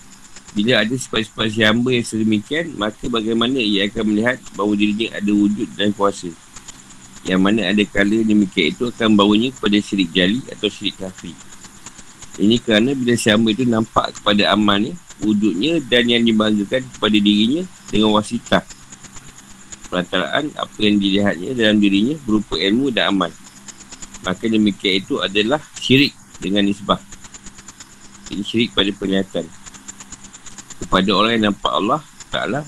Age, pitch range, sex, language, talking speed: 50-69, 95-110 Hz, male, Malay, 135 wpm